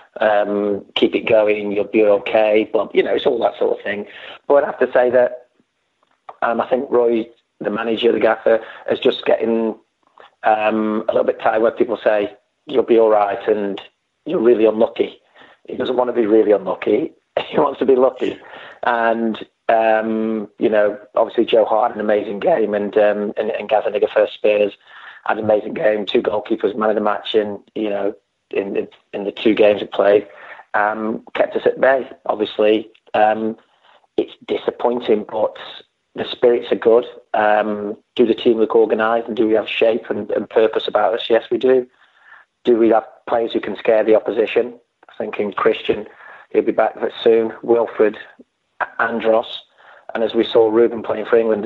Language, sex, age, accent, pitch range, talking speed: English, male, 30-49, British, 105-125 Hz, 185 wpm